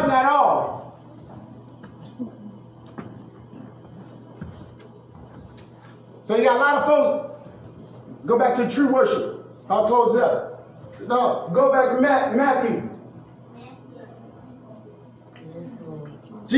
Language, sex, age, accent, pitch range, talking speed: English, male, 40-59, American, 255-310 Hz, 85 wpm